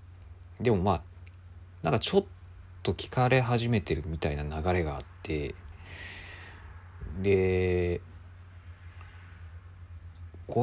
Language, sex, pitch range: Japanese, male, 85-95 Hz